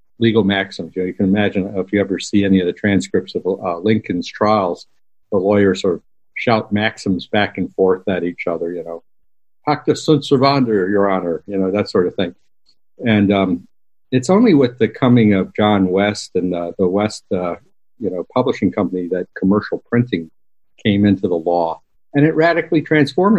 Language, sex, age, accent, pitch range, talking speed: English, male, 50-69, American, 95-125 Hz, 180 wpm